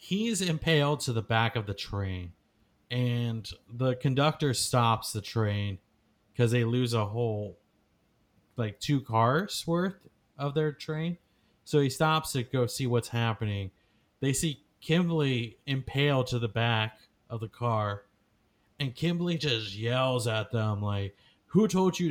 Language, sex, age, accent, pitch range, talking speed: English, male, 30-49, American, 110-140 Hz, 145 wpm